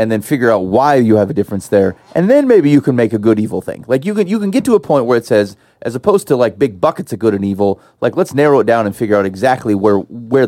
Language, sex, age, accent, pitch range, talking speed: English, male, 30-49, American, 105-145 Hz, 305 wpm